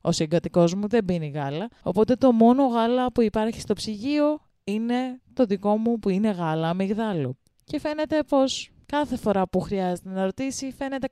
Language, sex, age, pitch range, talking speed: Greek, female, 20-39, 175-260 Hz, 175 wpm